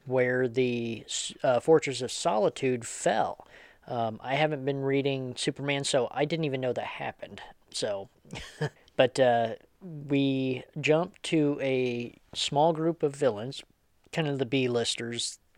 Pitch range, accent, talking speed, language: 115-140 Hz, American, 135 wpm, English